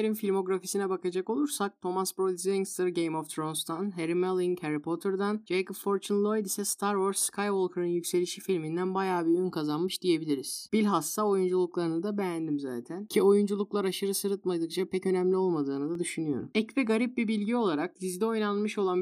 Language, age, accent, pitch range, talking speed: Turkish, 30-49, native, 180-210 Hz, 160 wpm